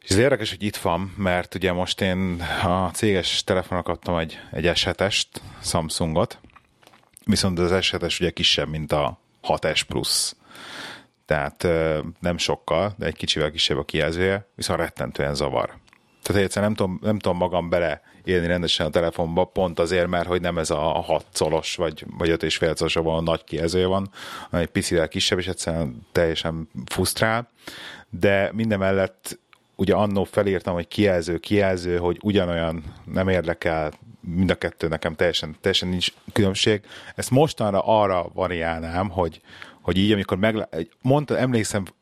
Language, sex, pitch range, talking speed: Hungarian, male, 85-100 Hz, 145 wpm